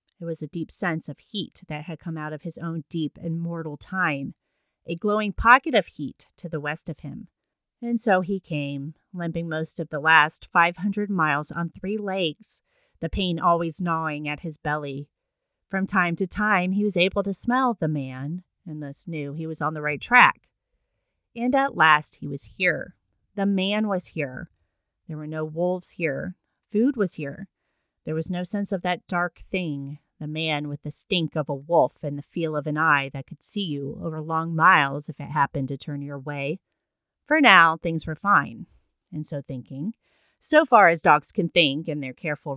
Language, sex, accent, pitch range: English, female, American, 150-190 Hz